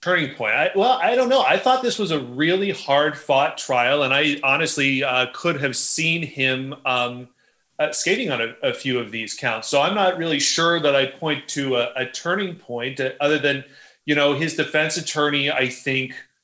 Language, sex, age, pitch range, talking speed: English, male, 30-49, 120-155 Hz, 200 wpm